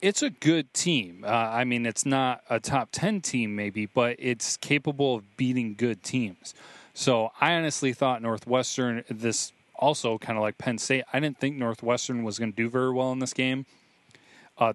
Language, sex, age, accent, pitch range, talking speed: English, male, 30-49, American, 110-130 Hz, 185 wpm